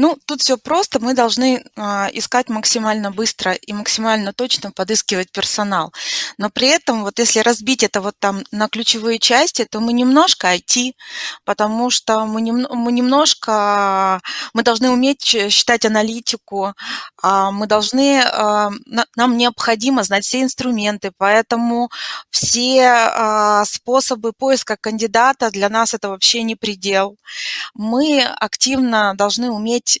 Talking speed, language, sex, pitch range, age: 120 wpm, Russian, female, 195-240 Hz, 20-39